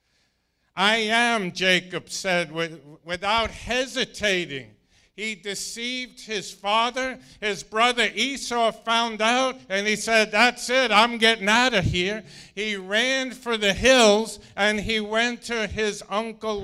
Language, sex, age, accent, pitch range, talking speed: English, male, 50-69, American, 180-225 Hz, 130 wpm